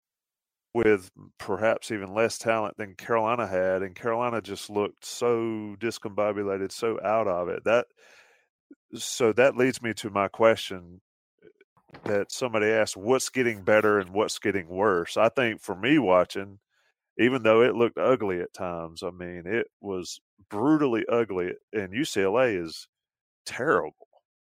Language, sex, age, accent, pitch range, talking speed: English, male, 30-49, American, 95-120 Hz, 145 wpm